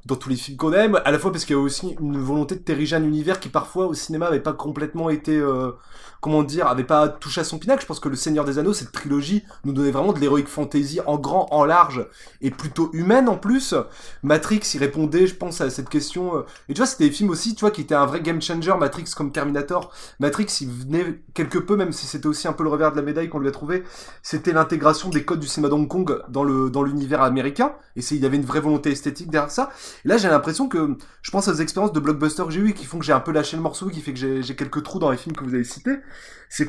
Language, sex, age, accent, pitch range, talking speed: French, male, 20-39, French, 145-190 Hz, 280 wpm